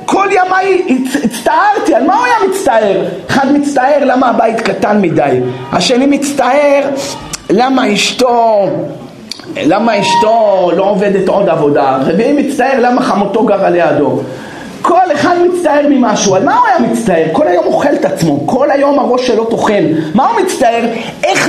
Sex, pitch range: male, 205-280 Hz